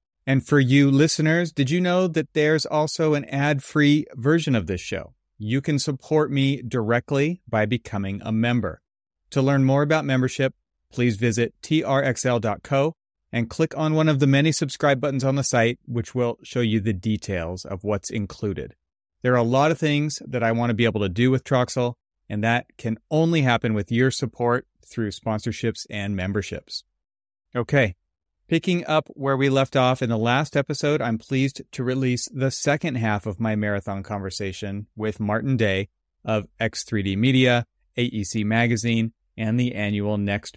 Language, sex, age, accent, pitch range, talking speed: English, male, 30-49, American, 105-140 Hz, 170 wpm